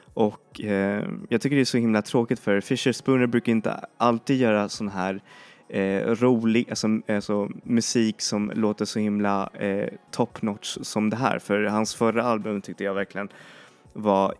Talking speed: 165 wpm